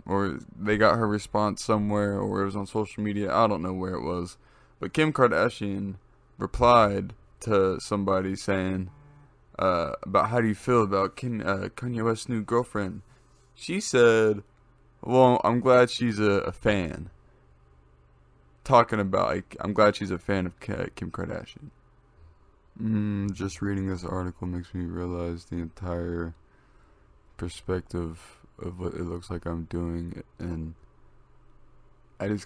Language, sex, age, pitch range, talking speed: English, male, 20-39, 85-110 Hz, 140 wpm